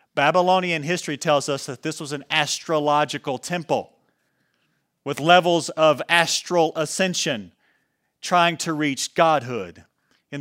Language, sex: English, male